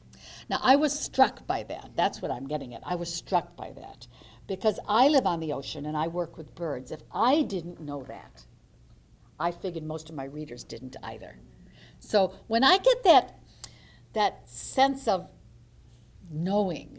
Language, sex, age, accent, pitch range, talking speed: English, female, 60-79, American, 155-245 Hz, 175 wpm